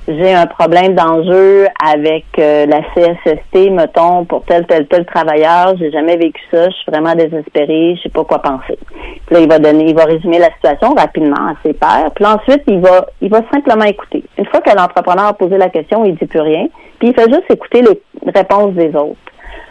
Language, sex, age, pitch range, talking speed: French, female, 40-59, 165-235 Hz, 210 wpm